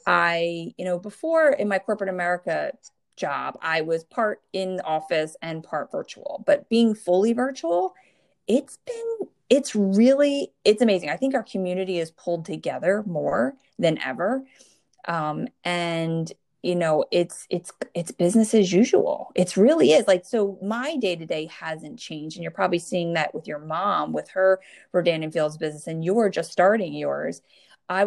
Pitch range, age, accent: 170-240 Hz, 30-49, American